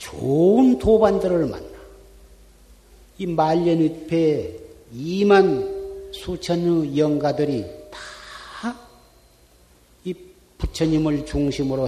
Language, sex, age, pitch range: Korean, male, 40-59, 130-180 Hz